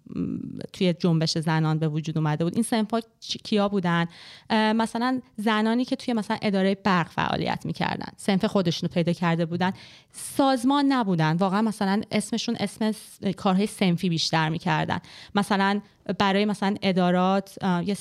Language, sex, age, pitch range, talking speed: Persian, female, 30-49, 180-225 Hz, 140 wpm